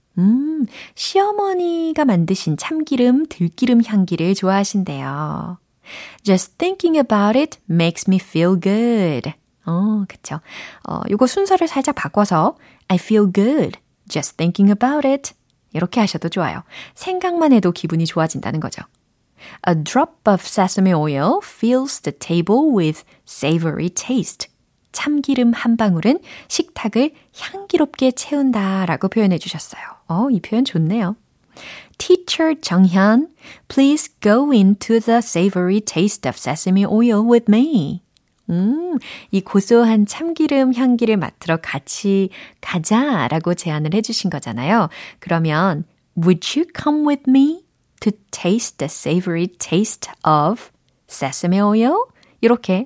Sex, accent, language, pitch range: female, native, Korean, 175-260 Hz